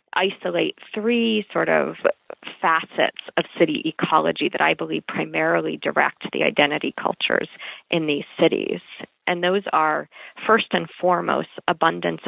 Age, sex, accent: 40-59, female, American